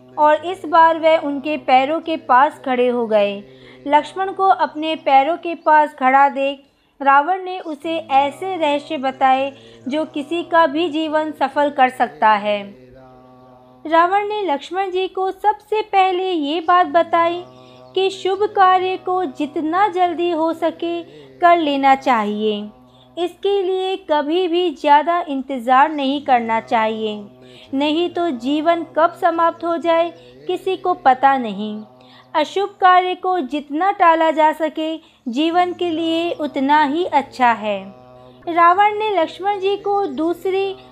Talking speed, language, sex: 140 wpm, Hindi, female